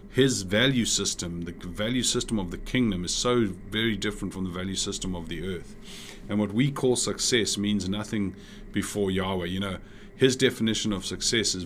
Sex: male